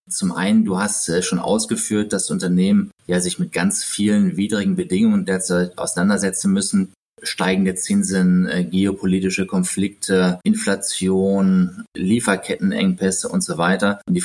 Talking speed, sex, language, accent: 120 wpm, male, German, German